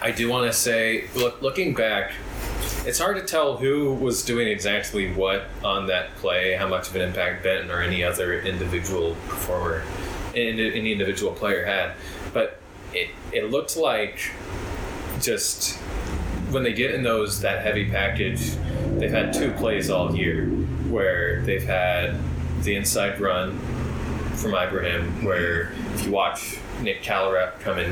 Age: 20-39